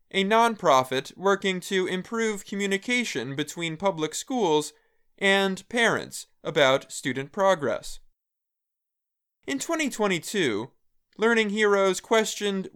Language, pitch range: English, 155-210 Hz